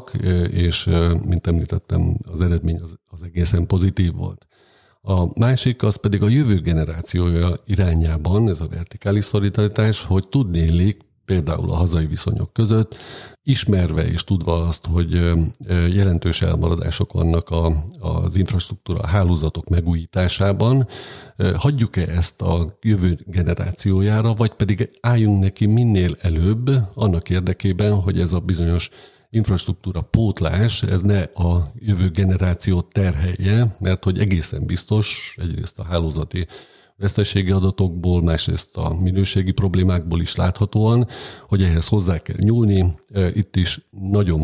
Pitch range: 85-105 Hz